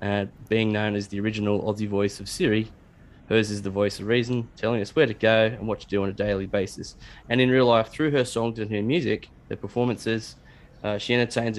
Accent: Australian